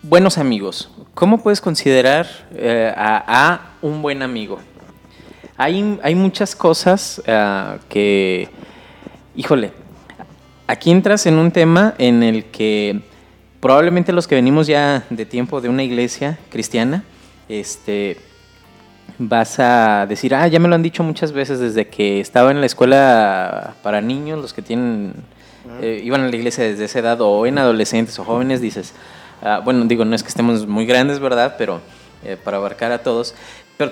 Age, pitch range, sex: 20-39, 115-170 Hz, male